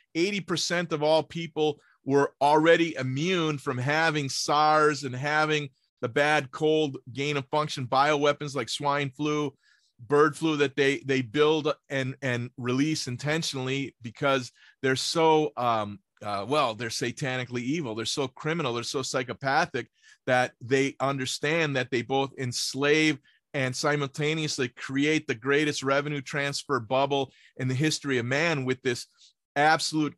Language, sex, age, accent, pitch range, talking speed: English, male, 30-49, American, 130-155 Hz, 135 wpm